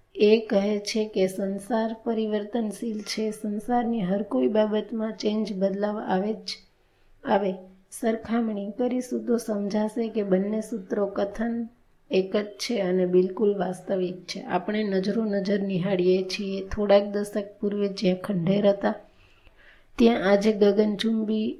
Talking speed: 125 wpm